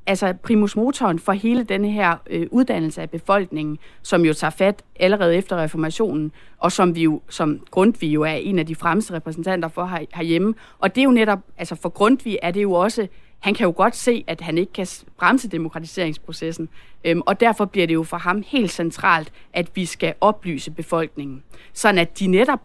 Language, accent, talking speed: Danish, native, 190 wpm